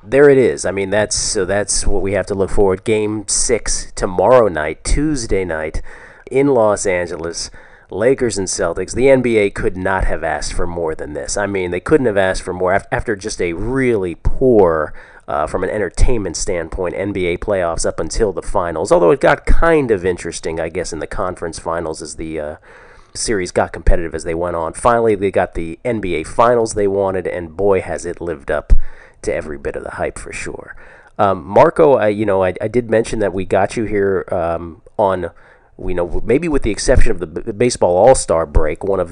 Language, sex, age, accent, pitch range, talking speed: English, male, 30-49, American, 90-115 Hz, 205 wpm